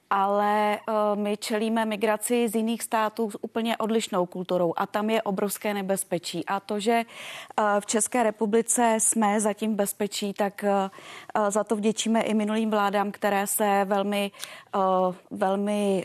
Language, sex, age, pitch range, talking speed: Czech, female, 30-49, 190-210 Hz, 140 wpm